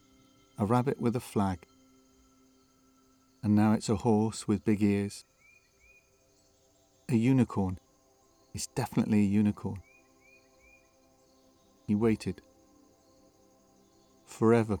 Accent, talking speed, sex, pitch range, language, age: British, 90 wpm, male, 75-115 Hz, English, 40-59